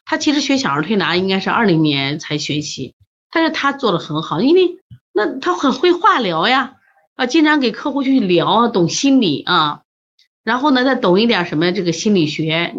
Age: 30-49